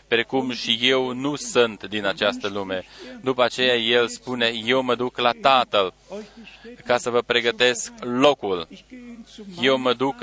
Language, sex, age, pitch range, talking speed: Romanian, male, 20-39, 120-165 Hz, 145 wpm